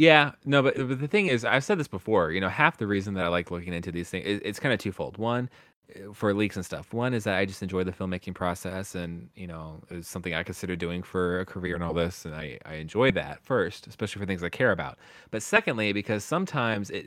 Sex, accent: male, American